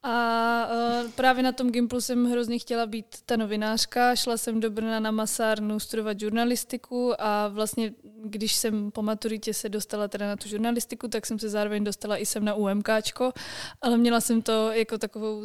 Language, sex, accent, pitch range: Czech, female, native, 210-230 Hz